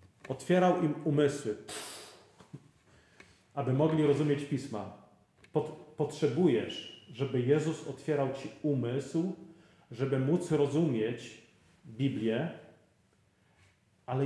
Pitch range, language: 115-140 Hz, Polish